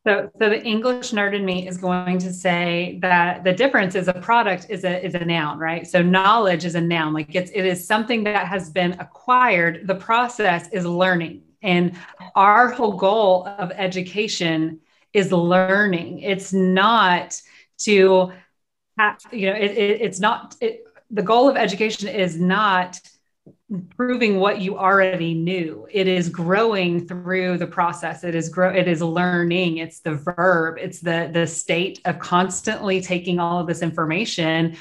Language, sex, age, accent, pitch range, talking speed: English, female, 30-49, American, 175-200 Hz, 165 wpm